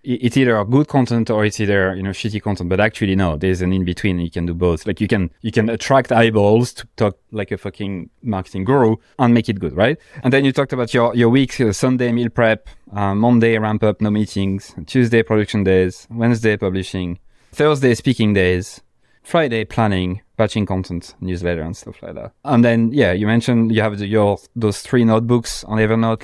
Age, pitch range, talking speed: 20-39, 100-120 Hz, 210 wpm